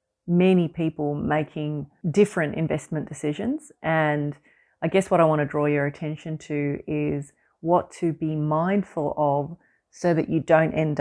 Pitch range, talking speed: 150-165 Hz, 155 wpm